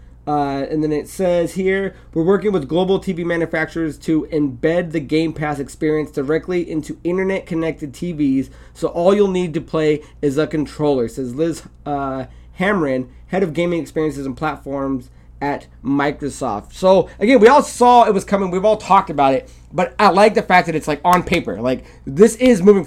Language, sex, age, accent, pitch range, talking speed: English, male, 20-39, American, 150-195 Hz, 185 wpm